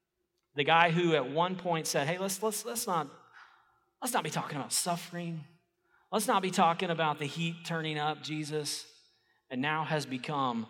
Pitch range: 135-195 Hz